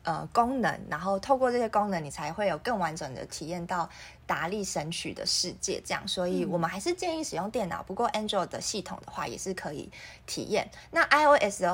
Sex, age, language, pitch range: female, 20-39, Chinese, 170-220 Hz